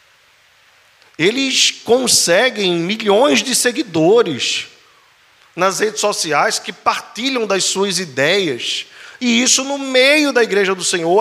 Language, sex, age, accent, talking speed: Portuguese, male, 40-59, Brazilian, 110 wpm